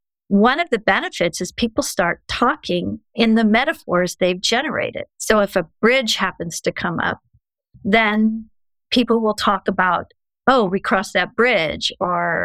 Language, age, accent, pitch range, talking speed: English, 50-69, American, 185-230 Hz, 155 wpm